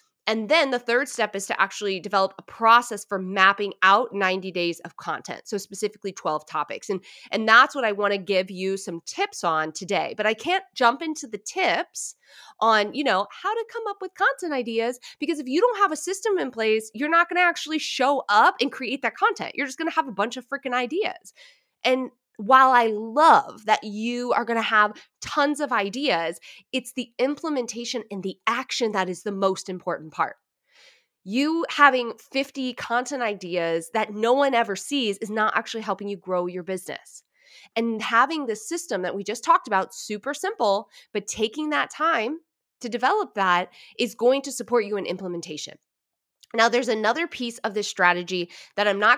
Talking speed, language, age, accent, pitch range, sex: 195 wpm, English, 20-39, American, 195-275 Hz, female